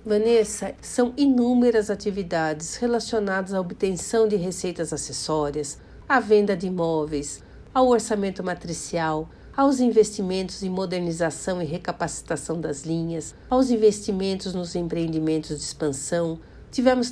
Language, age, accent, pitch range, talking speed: Portuguese, 60-79, Brazilian, 165-215 Hz, 110 wpm